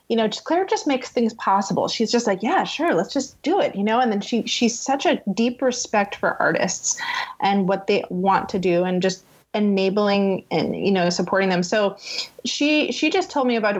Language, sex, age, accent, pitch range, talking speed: English, female, 20-39, American, 205-275 Hz, 215 wpm